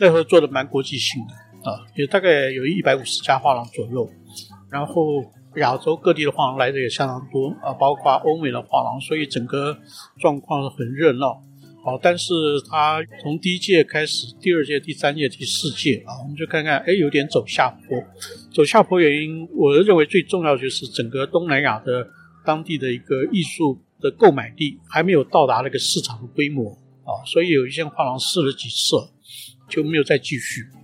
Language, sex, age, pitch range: Chinese, male, 50-69, 130-160 Hz